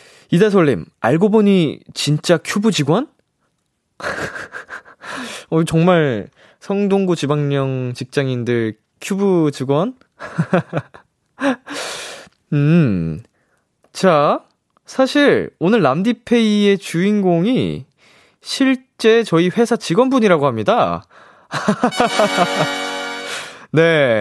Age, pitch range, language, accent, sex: 20-39, 130-200 Hz, Korean, native, male